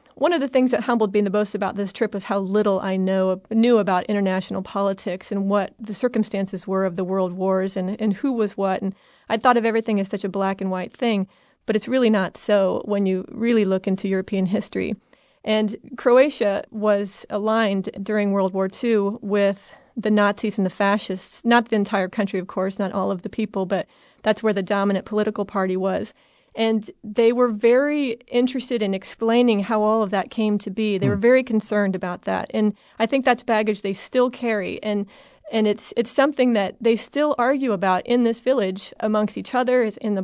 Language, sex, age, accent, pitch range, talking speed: English, female, 30-49, American, 200-235 Hz, 205 wpm